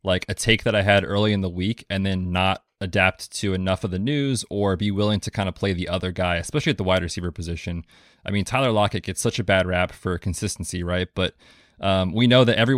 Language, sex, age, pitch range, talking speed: English, male, 20-39, 95-115 Hz, 250 wpm